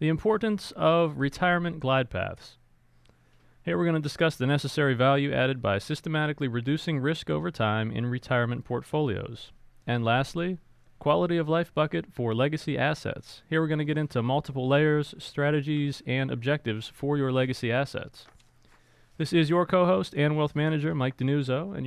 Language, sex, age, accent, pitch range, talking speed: English, male, 30-49, American, 120-160 Hz, 155 wpm